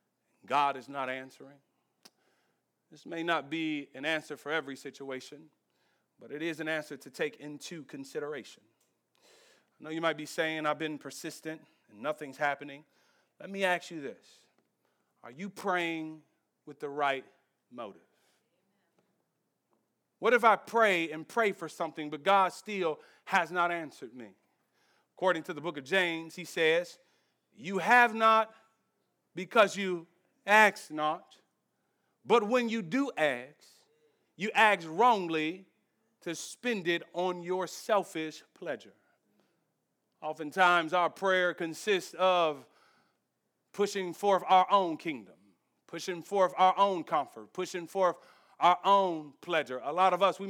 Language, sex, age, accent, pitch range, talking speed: English, male, 40-59, American, 160-205 Hz, 140 wpm